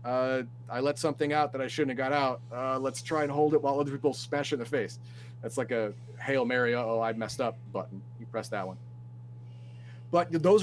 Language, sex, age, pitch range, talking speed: English, male, 30-49, 120-145 Hz, 225 wpm